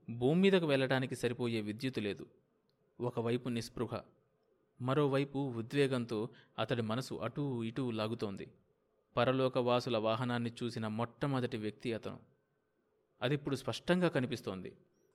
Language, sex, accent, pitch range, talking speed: Telugu, male, native, 120-160 Hz, 95 wpm